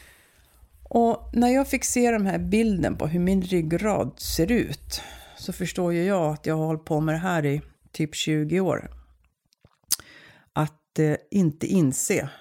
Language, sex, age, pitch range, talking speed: Swedish, female, 50-69, 150-205 Hz, 160 wpm